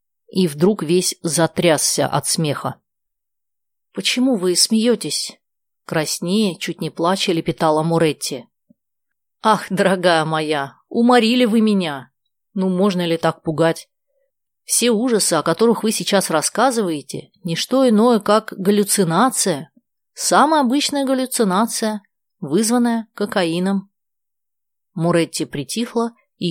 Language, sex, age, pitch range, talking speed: Russian, female, 30-49, 160-220 Hz, 105 wpm